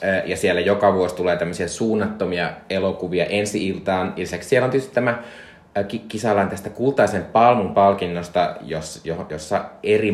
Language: Finnish